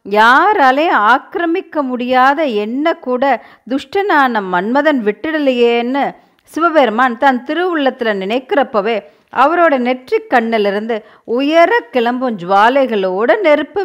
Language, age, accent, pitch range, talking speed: Tamil, 40-59, native, 220-290 Hz, 80 wpm